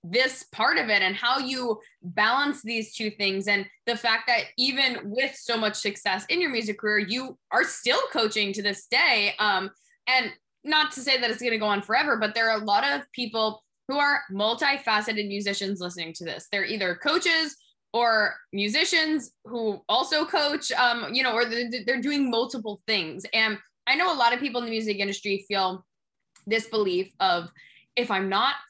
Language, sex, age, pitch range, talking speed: English, female, 10-29, 200-255 Hz, 190 wpm